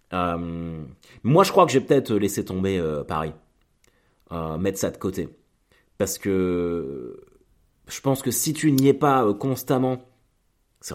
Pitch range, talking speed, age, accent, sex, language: 95-130 Hz, 165 wpm, 30-49, French, male, French